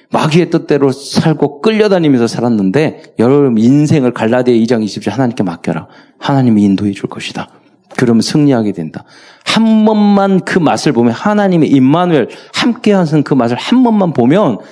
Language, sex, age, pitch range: Korean, male, 40-59, 130-200 Hz